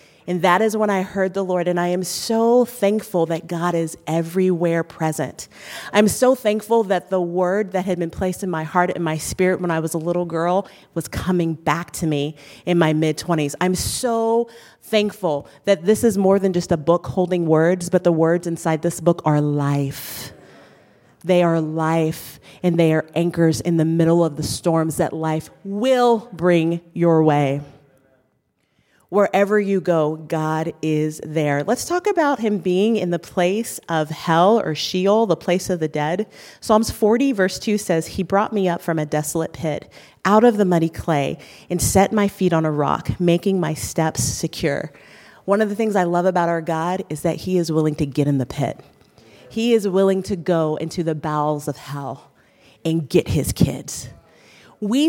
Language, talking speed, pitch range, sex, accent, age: English, 190 wpm, 160-195 Hz, female, American, 30-49